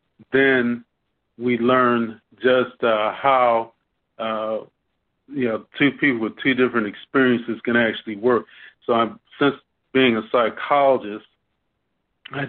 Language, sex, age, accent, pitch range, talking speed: English, male, 40-59, American, 110-125 Hz, 120 wpm